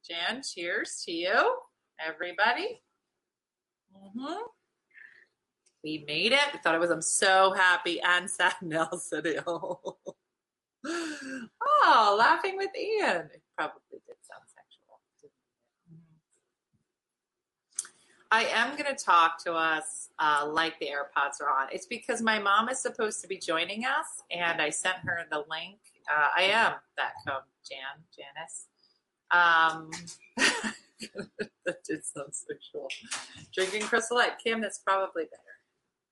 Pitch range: 165-270 Hz